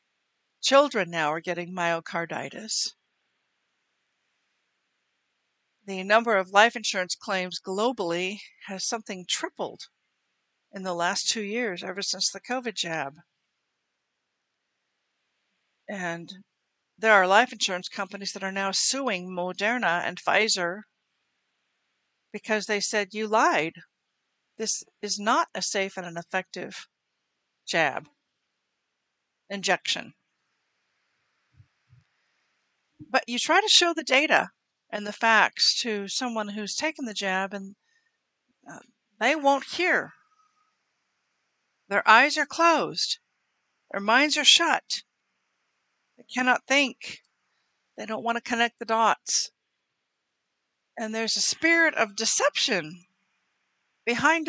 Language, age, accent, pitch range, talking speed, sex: English, 50-69, American, 195-260 Hz, 110 wpm, female